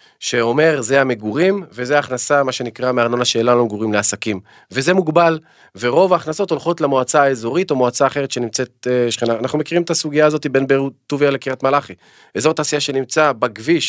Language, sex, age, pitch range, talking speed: Hebrew, male, 40-59, 120-160 Hz, 165 wpm